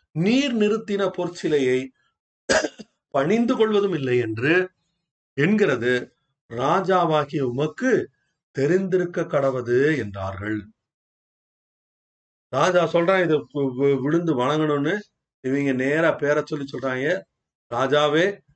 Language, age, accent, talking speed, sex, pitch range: Tamil, 30-49, native, 80 wpm, male, 145-205 Hz